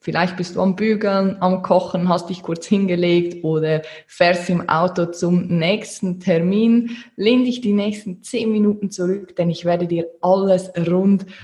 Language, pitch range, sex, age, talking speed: German, 165-195 Hz, female, 20-39, 165 wpm